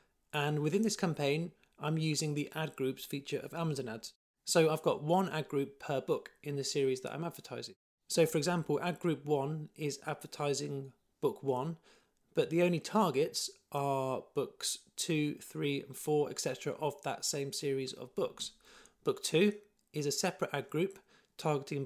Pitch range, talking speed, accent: 140-170 Hz, 170 wpm, British